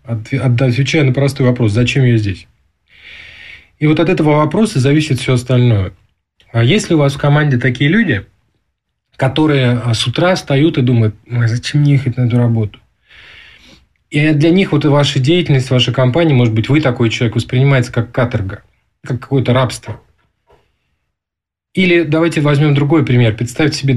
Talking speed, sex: 155 wpm, male